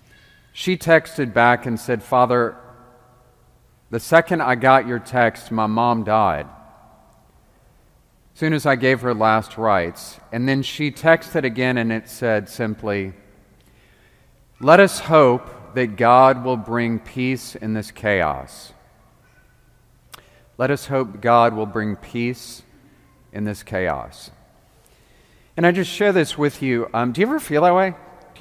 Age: 40-59